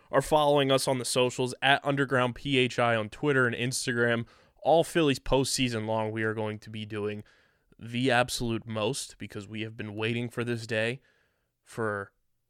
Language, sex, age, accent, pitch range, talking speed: English, male, 20-39, American, 115-135 Hz, 170 wpm